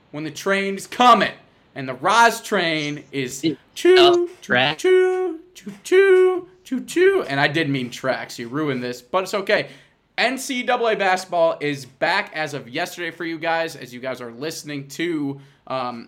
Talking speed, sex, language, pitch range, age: 165 wpm, male, English, 130-165 Hz, 20-39